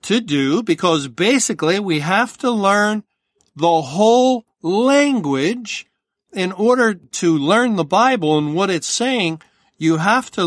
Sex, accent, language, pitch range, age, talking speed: male, American, English, 150-195 Hz, 50-69, 140 wpm